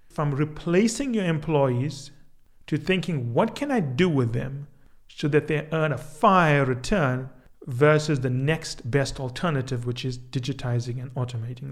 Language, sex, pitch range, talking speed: English, male, 130-160 Hz, 150 wpm